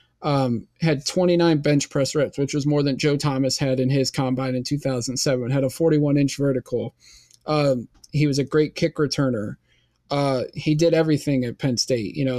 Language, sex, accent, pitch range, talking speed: English, male, American, 130-150 Hz, 190 wpm